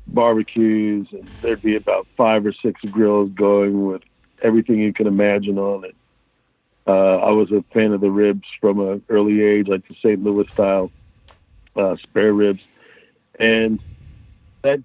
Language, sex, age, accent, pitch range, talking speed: English, male, 50-69, American, 100-115 Hz, 160 wpm